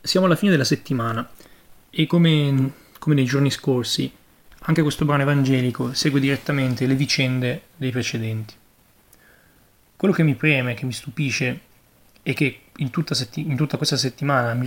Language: Italian